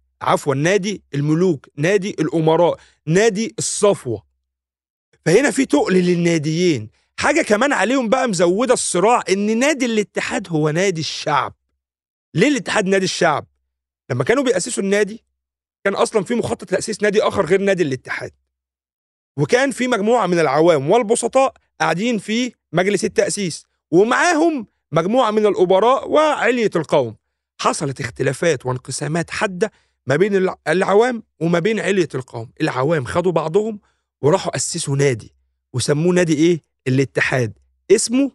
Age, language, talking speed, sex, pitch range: 40-59, Arabic, 125 wpm, male, 135-210 Hz